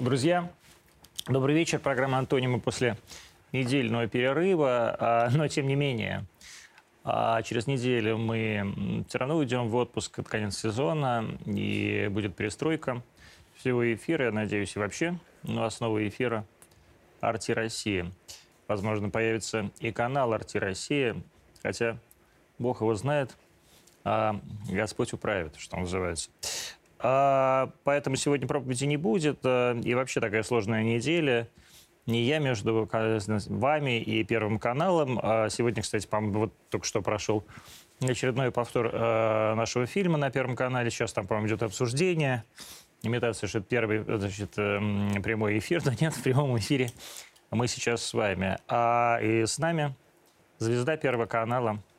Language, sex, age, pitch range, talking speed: Russian, male, 20-39, 110-130 Hz, 130 wpm